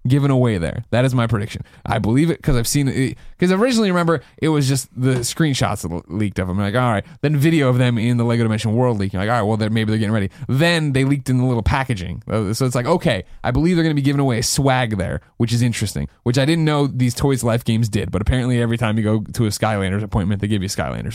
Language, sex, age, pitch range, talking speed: English, male, 20-39, 110-135 Hz, 270 wpm